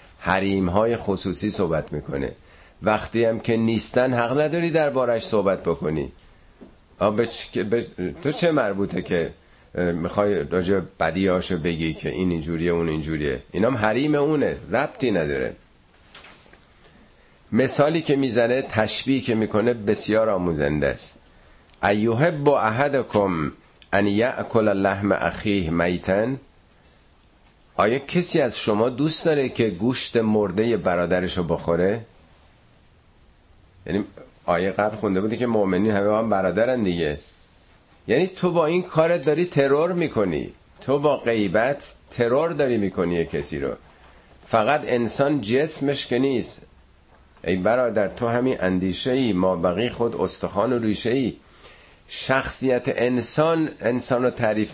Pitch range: 90-130 Hz